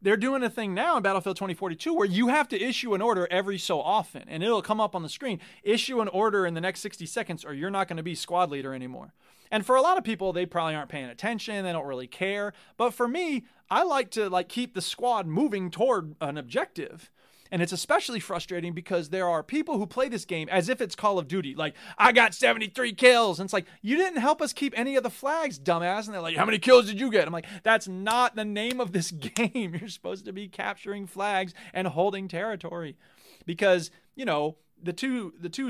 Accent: American